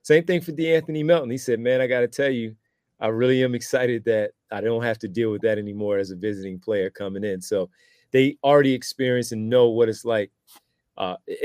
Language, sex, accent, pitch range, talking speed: English, male, American, 105-125 Hz, 225 wpm